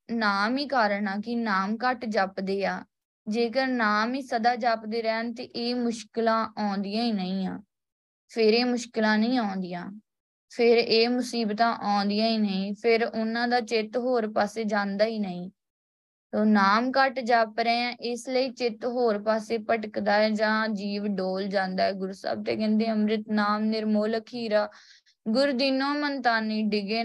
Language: Punjabi